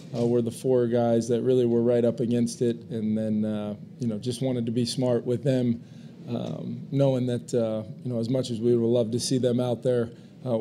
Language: English